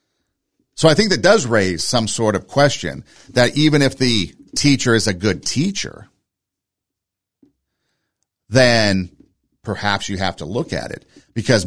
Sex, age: male, 50-69